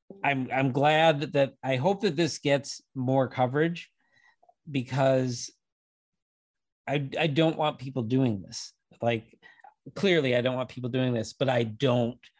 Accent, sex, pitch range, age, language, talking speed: American, male, 120-145 Hz, 40-59, English, 150 wpm